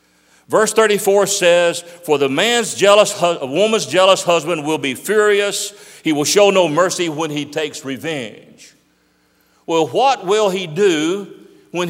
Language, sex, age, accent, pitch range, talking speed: English, male, 50-69, American, 140-200 Hz, 145 wpm